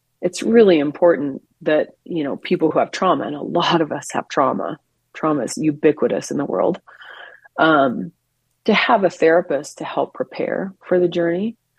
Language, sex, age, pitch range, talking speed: English, female, 30-49, 150-185 Hz, 175 wpm